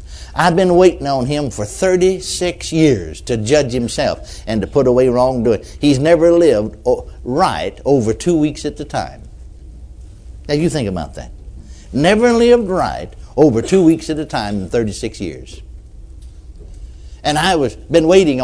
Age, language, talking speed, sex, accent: 60-79, English, 155 wpm, male, American